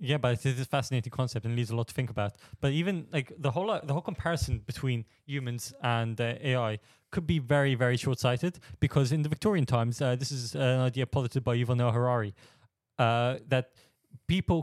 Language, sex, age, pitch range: English, male, 20-39, 120-145 Hz